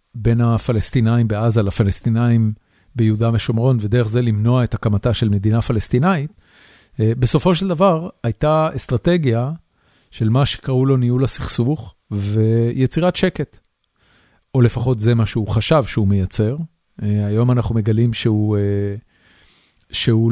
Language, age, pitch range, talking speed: Hebrew, 40-59, 110-130 Hz, 120 wpm